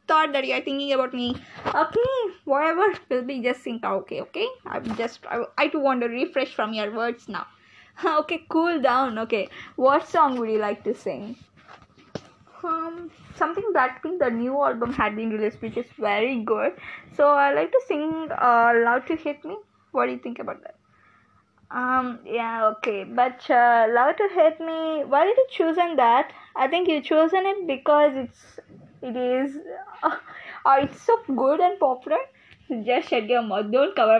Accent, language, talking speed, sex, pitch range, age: Indian, English, 180 wpm, female, 235-315 Hz, 20-39